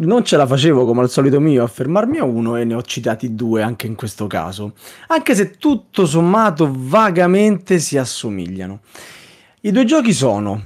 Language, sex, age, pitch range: Italian, male, 30-49, 110-165 Hz